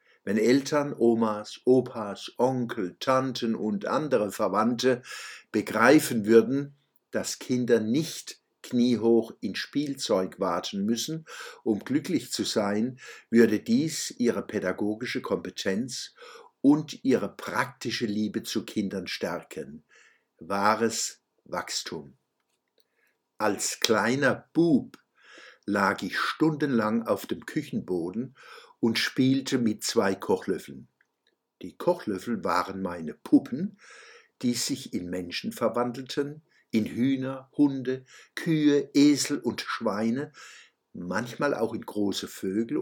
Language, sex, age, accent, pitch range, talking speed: German, male, 60-79, German, 110-135 Hz, 100 wpm